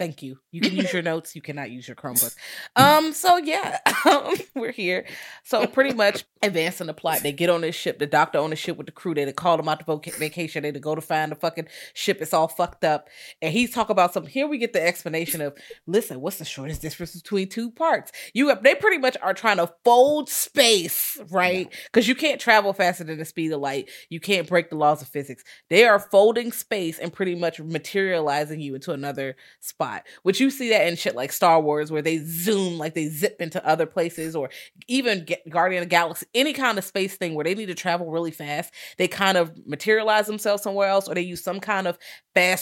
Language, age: English, 30-49